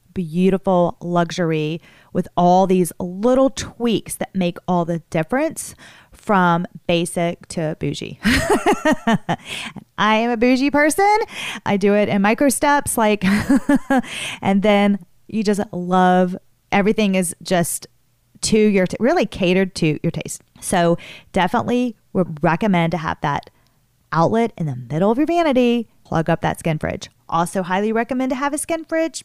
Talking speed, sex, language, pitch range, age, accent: 145 wpm, female, English, 160-210 Hz, 30-49, American